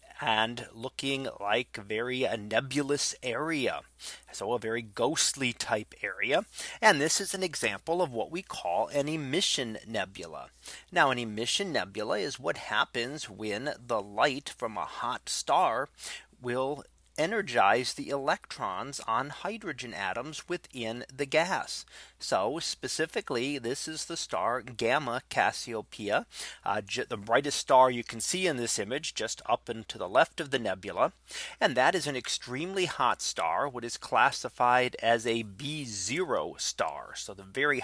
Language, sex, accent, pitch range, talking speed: English, male, American, 115-155 Hz, 150 wpm